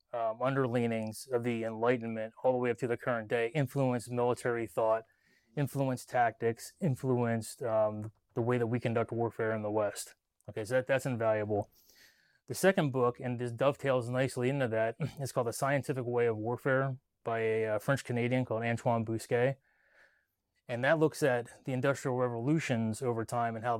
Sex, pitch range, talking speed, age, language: male, 115-135 Hz, 170 wpm, 30-49, English